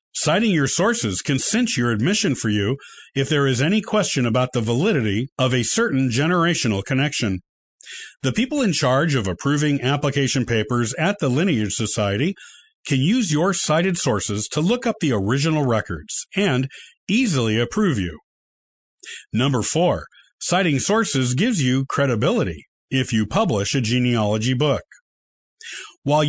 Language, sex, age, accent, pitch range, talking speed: English, male, 50-69, American, 115-175 Hz, 145 wpm